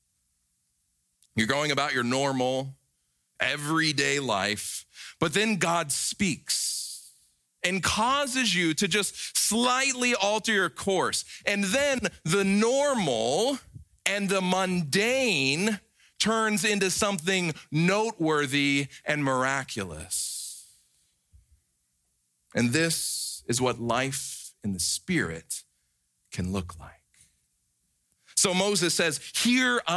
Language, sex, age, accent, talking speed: English, male, 40-59, American, 95 wpm